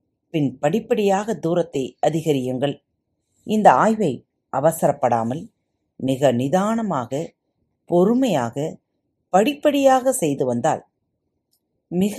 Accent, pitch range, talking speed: native, 140-215 Hz, 70 wpm